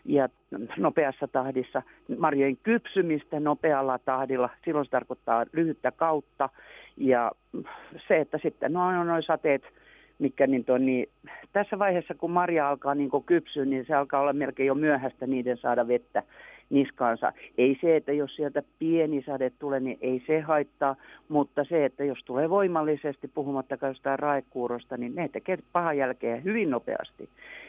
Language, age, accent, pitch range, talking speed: Finnish, 50-69, native, 125-155 Hz, 150 wpm